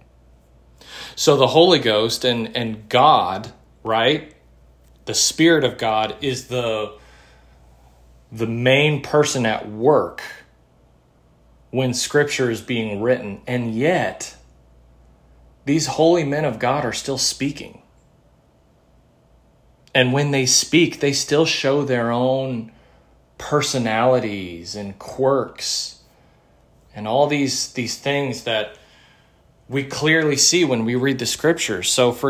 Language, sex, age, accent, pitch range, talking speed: English, male, 30-49, American, 100-130 Hz, 115 wpm